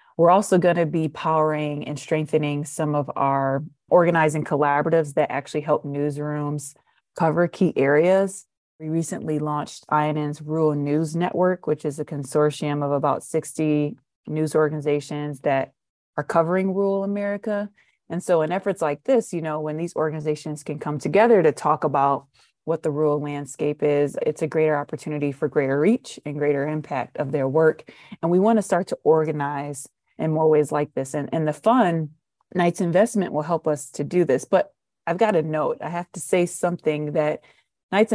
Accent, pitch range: American, 150-170 Hz